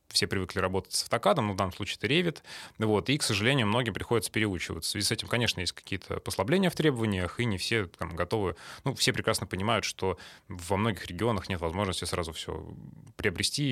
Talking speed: 195 wpm